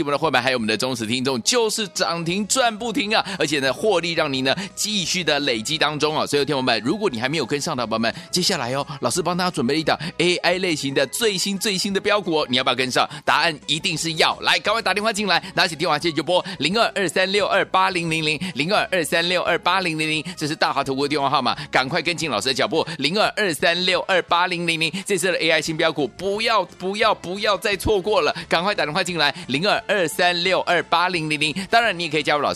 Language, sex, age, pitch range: Chinese, male, 30-49, 135-185 Hz